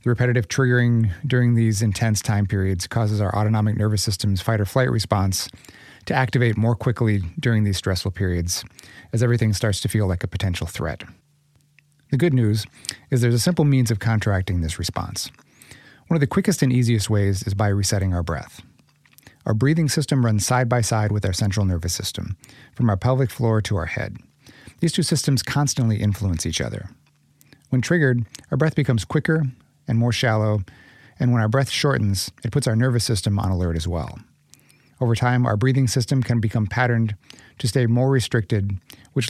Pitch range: 100-130 Hz